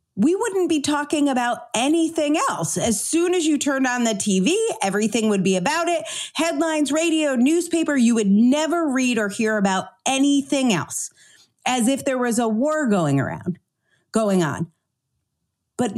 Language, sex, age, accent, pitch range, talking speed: English, female, 40-59, American, 220-320 Hz, 160 wpm